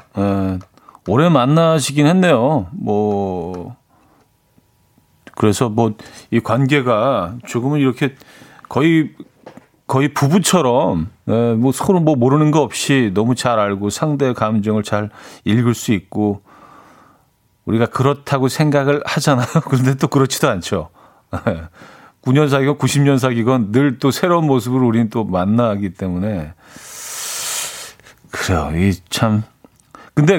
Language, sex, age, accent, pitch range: Korean, male, 40-59, native, 110-155 Hz